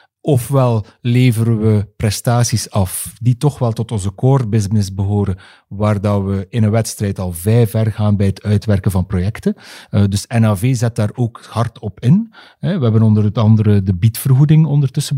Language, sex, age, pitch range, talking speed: Dutch, male, 40-59, 105-130 Hz, 170 wpm